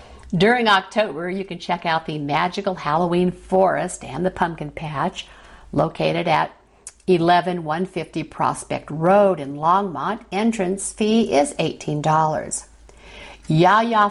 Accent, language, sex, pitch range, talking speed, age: American, English, female, 160-220 Hz, 110 wpm, 60-79